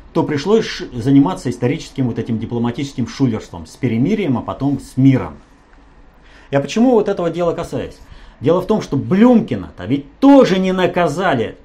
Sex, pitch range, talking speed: male, 115-175 Hz, 150 wpm